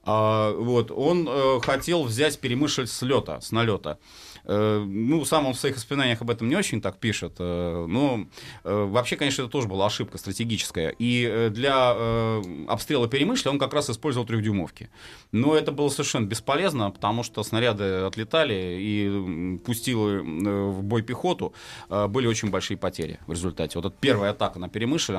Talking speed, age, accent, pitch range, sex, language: 170 wpm, 30-49, native, 100-130 Hz, male, Russian